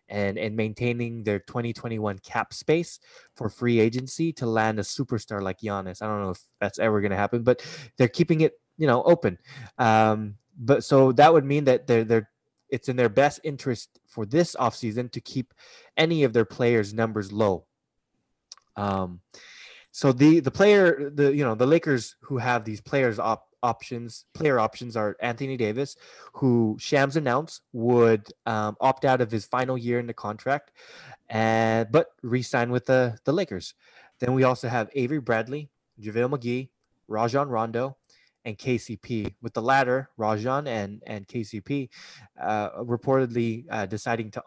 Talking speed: 165 wpm